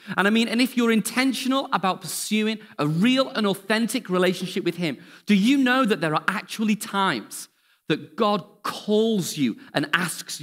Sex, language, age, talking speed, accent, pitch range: male, English, 40-59, 175 wpm, British, 165-220 Hz